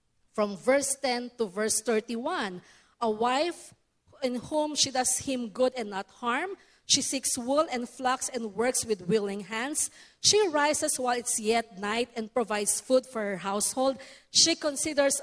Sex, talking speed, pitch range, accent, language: female, 160 wpm, 215-285 Hz, Filipino, English